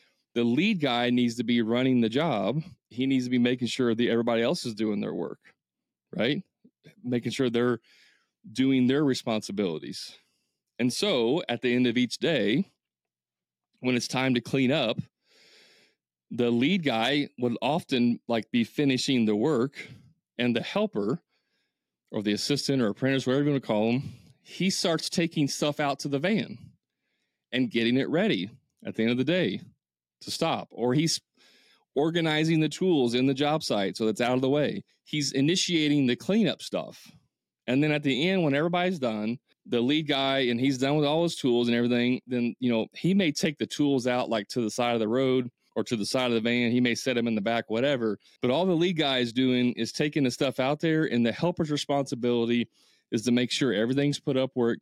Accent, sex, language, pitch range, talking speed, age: American, male, English, 120-145 Hz, 200 wpm, 30-49